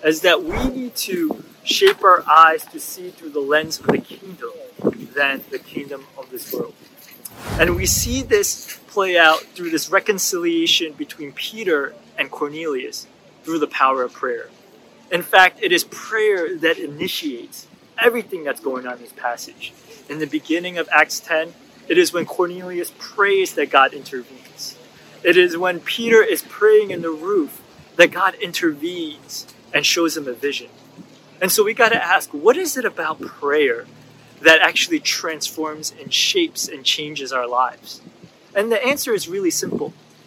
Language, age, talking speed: English, 30-49, 165 wpm